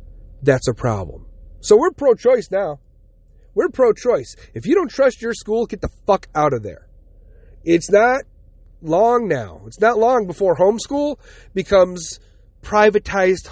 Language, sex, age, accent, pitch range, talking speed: English, male, 40-59, American, 135-225 Hz, 140 wpm